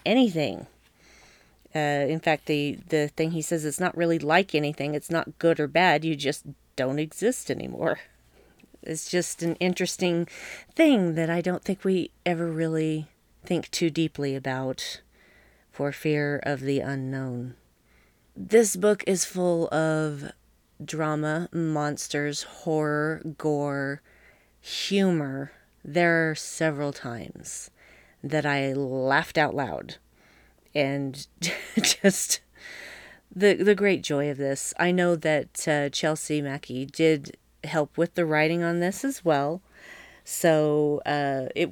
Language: English